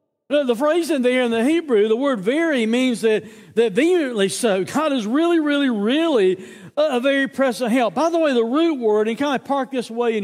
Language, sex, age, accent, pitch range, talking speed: English, male, 60-79, American, 155-240 Hz, 225 wpm